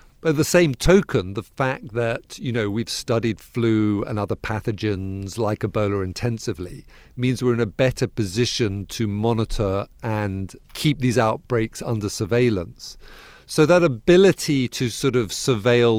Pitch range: 105-125 Hz